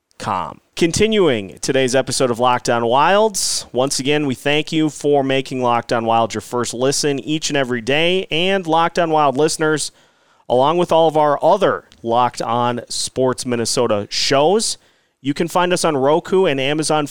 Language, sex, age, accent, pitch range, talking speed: English, male, 30-49, American, 125-165 Hz, 160 wpm